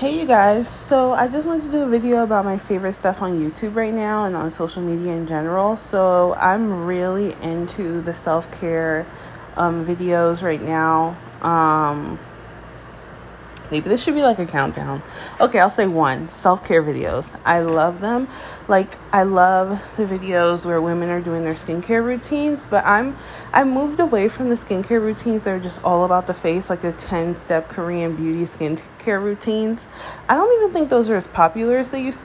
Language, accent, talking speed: English, American, 180 wpm